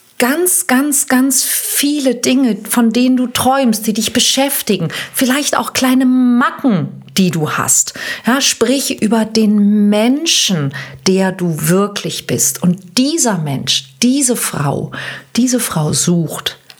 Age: 40-59